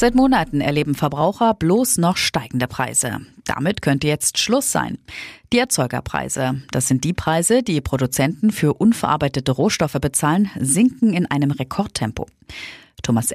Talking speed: 135 wpm